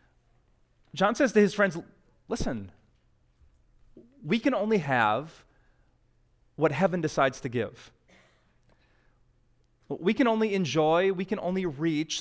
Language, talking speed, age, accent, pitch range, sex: English, 115 wpm, 30-49, American, 130-185 Hz, male